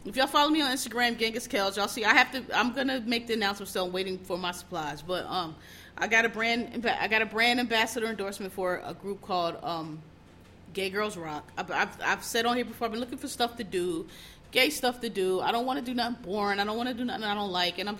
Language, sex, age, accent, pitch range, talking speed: English, female, 30-49, American, 175-235 Hz, 265 wpm